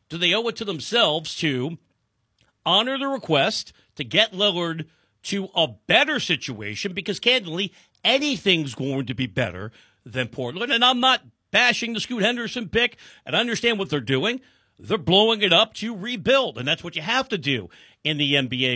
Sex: male